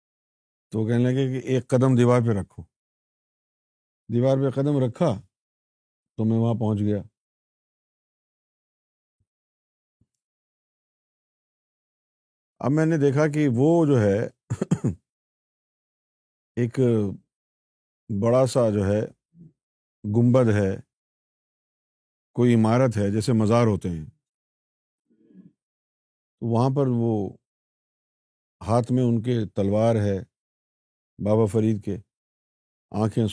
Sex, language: male, Urdu